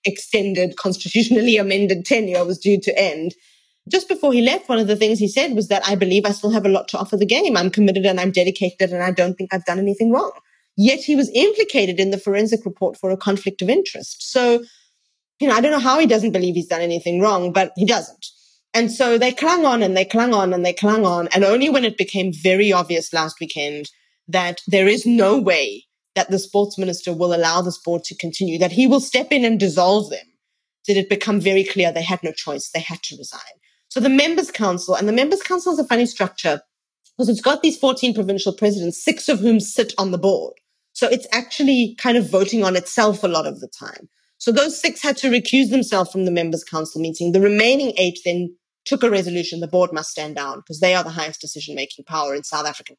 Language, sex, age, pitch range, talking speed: English, female, 30-49, 180-235 Hz, 230 wpm